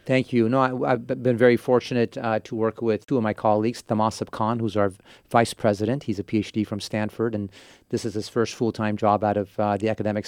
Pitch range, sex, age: 105-120 Hz, male, 40-59